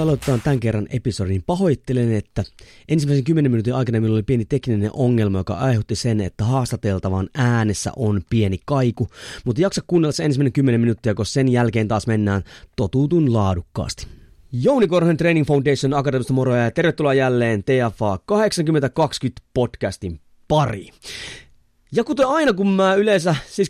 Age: 20-39